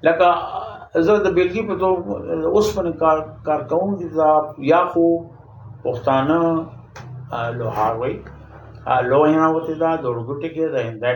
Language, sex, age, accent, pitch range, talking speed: English, male, 60-79, Indian, 125-160 Hz, 120 wpm